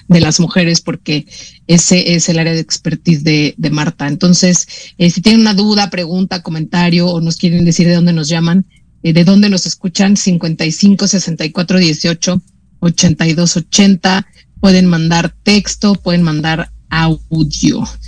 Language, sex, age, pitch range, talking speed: Spanish, female, 30-49, 165-195 Hz, 135 wpm